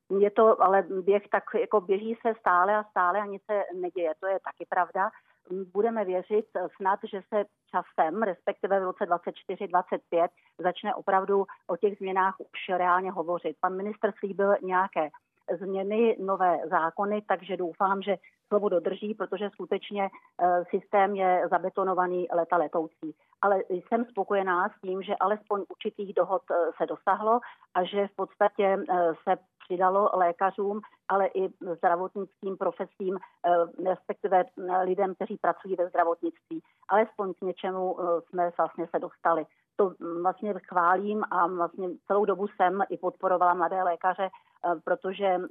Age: 40-59